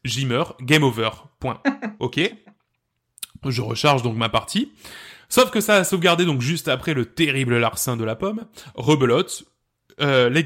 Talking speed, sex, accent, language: 160 wpm, male, French, French